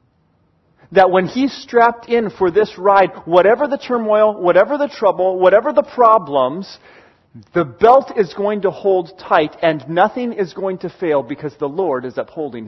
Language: English